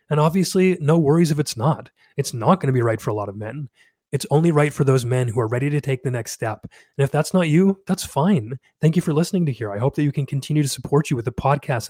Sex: male